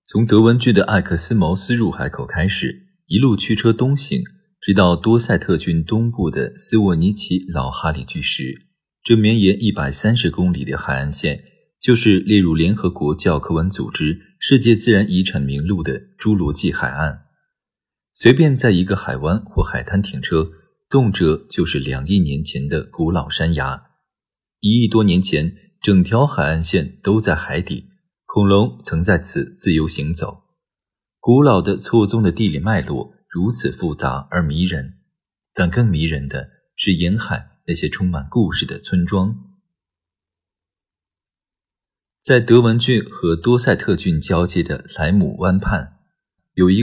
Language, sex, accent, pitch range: Chinese, male, native, 80-115 Hz